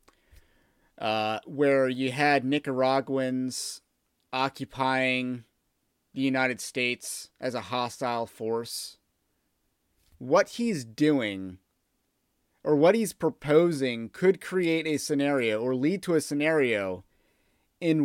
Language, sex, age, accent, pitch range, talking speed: English, male, 30-49, American, 110-145 Hz, 100 wpm